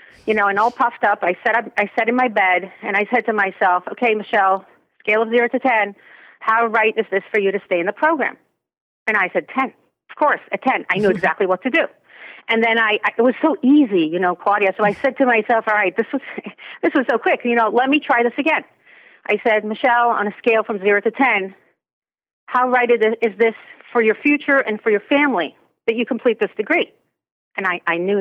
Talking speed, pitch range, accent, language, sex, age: 230 wpm, 200-255 Hz, American, English, female, 40-59